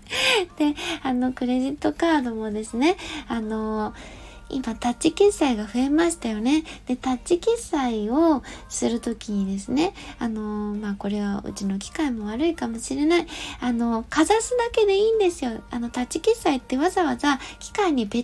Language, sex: Japanese, female